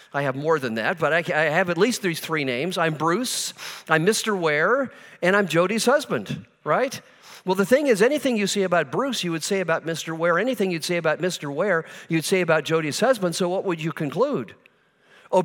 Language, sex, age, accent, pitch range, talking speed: English, male, 50-69, American, 165-215 Hz, 215 wpm